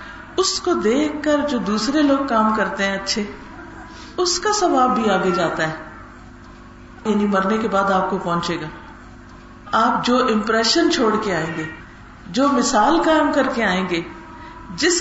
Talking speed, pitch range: 165 wpm, 190-285 Hz